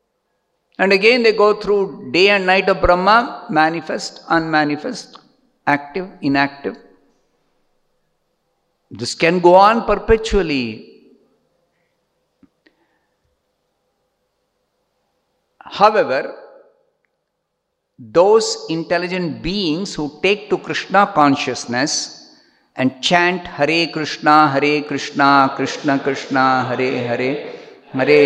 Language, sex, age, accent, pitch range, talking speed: English, male, 50-69, Indian, 140-205 Hz, 85 wpm